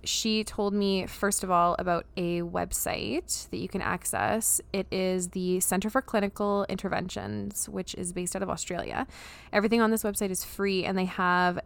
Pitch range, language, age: 170-195 Hz, English, 20-39